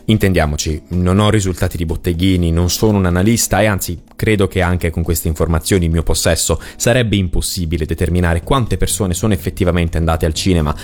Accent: native